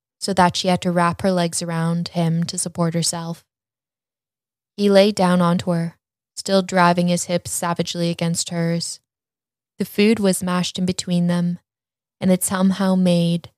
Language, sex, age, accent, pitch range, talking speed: English, female, 10-29, American, 170-185 Hz, 160 wpm